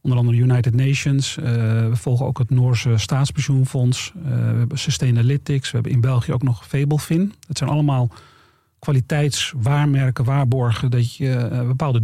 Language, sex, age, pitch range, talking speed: Dutch, male, 40-59, 125-145 Hz, 140 wpm